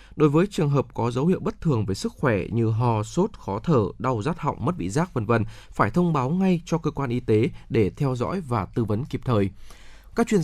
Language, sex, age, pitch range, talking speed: Vietnamese, male, 20-39, 110-150 Hz, 255 wpm